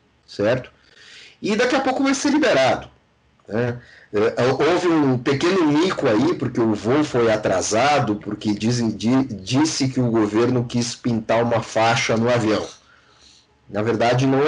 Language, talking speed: Portuguese, 150 wpm